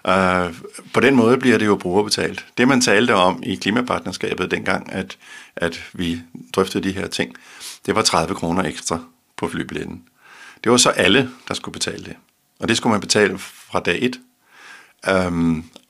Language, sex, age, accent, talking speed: Danish, male, 50-69, native, 175 wpm